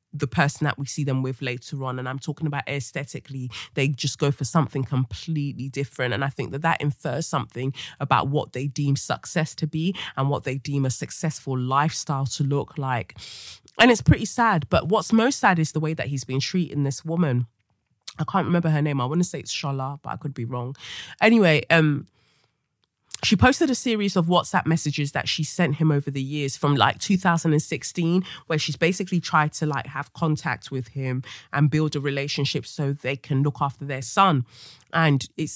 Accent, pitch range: British, 135-170 Hz